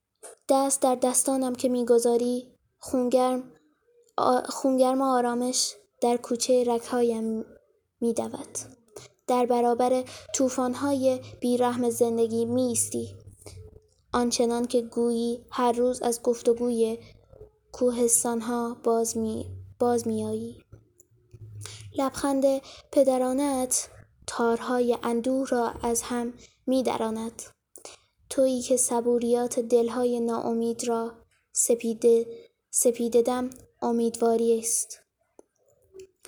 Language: Persian